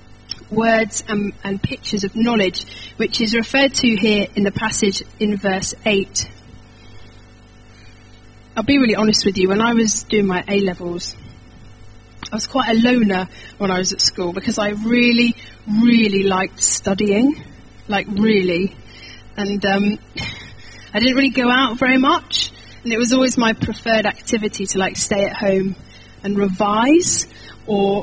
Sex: female